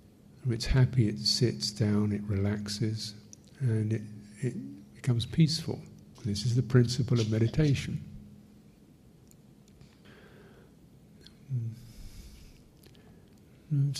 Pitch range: 105-140 Hz